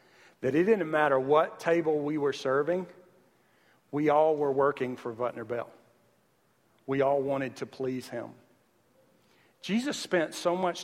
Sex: male